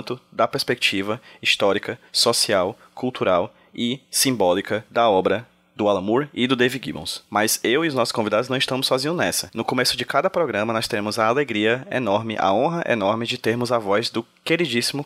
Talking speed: 180 wpm